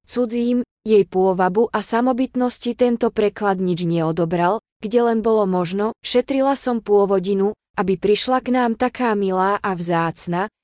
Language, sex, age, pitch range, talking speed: Slovak, female, 20-39, 195-240 Hz, 135 wpm